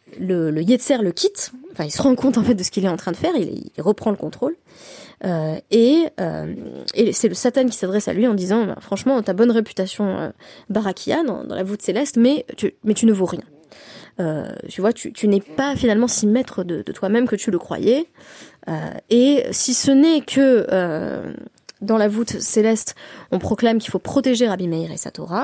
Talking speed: 220 wpm